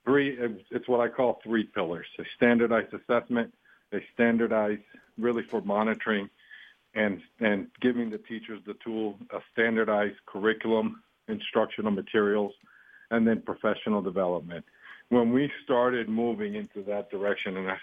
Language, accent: English, American